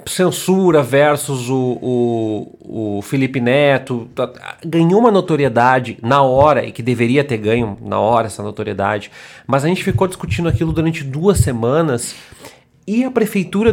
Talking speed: 140 wpm